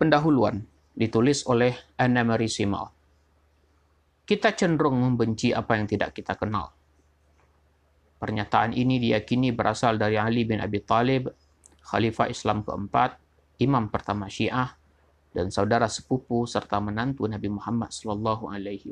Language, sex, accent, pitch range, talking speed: Indonesian, male, native, 95-125 Hz, 115 wpm